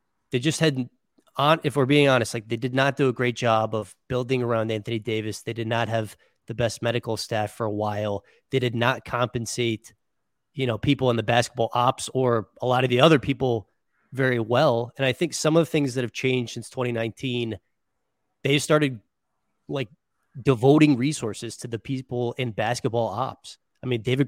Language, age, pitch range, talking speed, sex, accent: English, 20-39, 115-140 Hz, 195 wpm, male, American